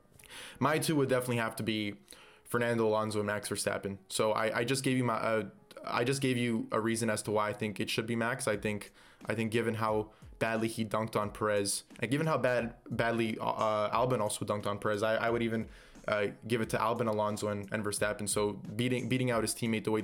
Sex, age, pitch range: male, 20-39, 105-115 Hz